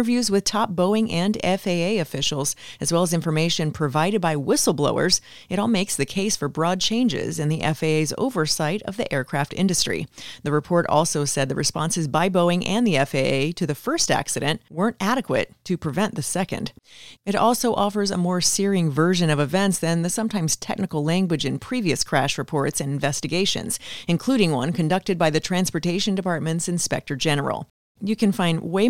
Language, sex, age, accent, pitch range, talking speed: English, female, 40-59, American, 155-205 Hz, 175 wpm